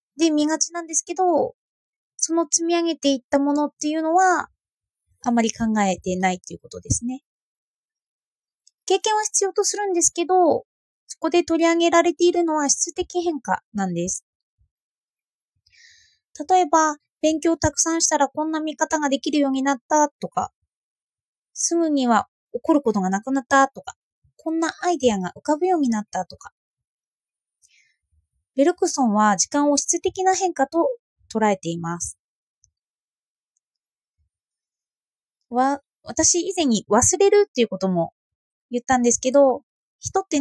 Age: 20-39